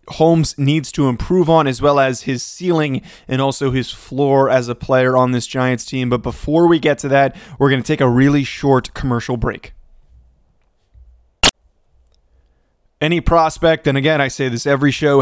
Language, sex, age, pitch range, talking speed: English, male, 20-39, 130-150 Hz, 180 wpm